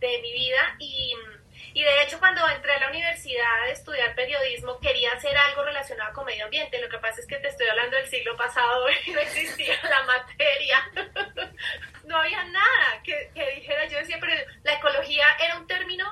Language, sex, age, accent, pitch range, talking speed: Spanish, female, 30-49, Colombian, 280-375 Hz, 195 wpm